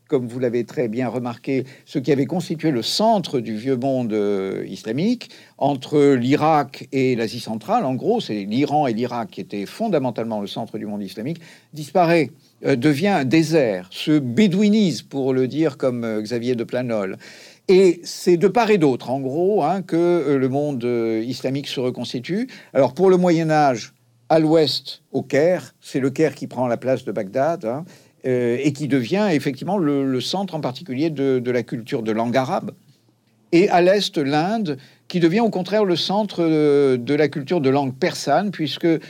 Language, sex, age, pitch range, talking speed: French, male, 50-69, 125-165 Hz, 185 wpm